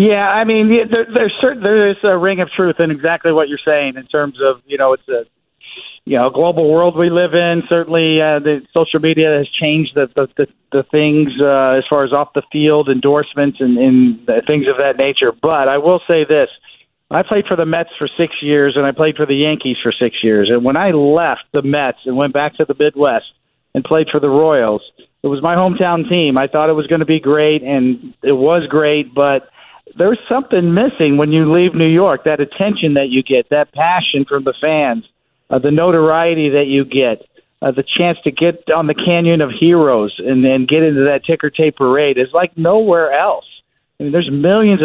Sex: male